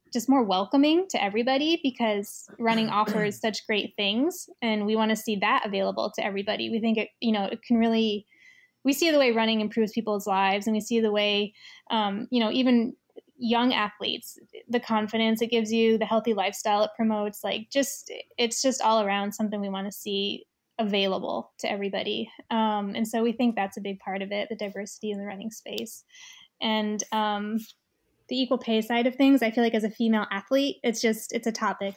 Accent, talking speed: American, 205 wpm